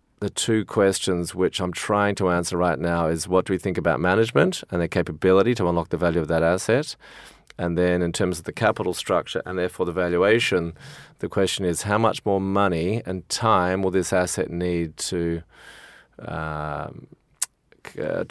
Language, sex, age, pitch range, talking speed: English, male, 30-49, 85-100 Hz, 180 wpm